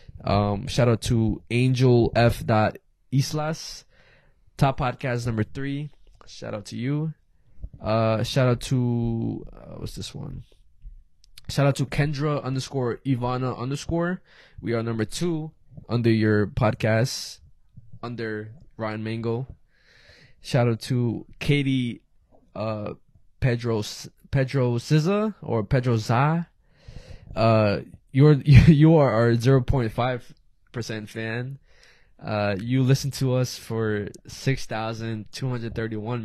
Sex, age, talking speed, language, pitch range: male, 20-39, 110 wpm, English, 110-135 Hz